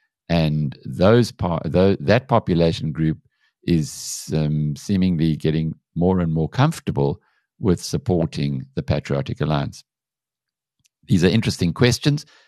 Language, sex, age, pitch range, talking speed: English, male, 60-79, 75-100 Hz, 105 wpm